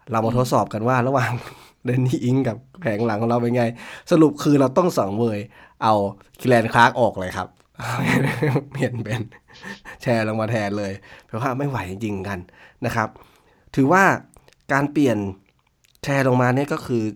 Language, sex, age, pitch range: Thai, male, 20-39, 105-135 Hz